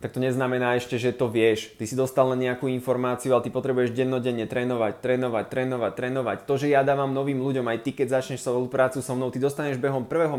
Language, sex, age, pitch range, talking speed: Slovak, male, 20-39, 120-135 Hz, 225 wpm